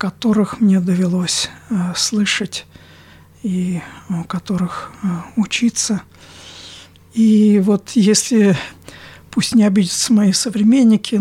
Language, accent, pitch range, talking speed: Russian, native, 180-215 Hz, 95 wpm